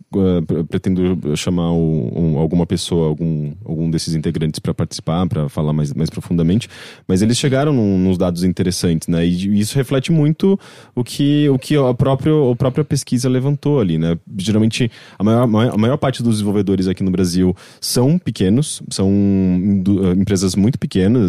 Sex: male